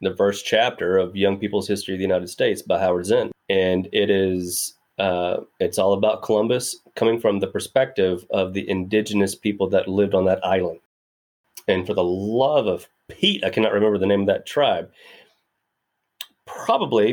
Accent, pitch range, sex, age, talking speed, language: American, 95-115 Hz, male, 30-49, 175 wpm, English